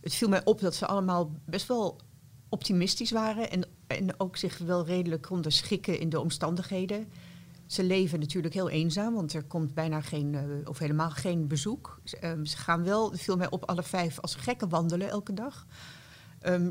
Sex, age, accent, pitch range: female, 40-59, Dutch, 150-185 Hz